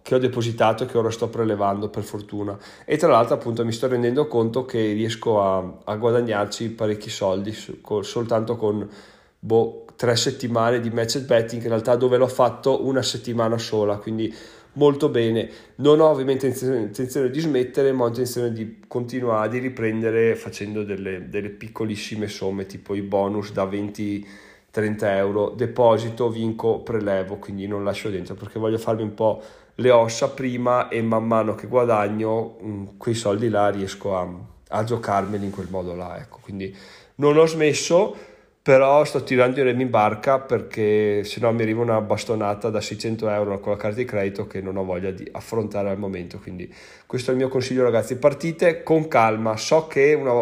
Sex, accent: male, native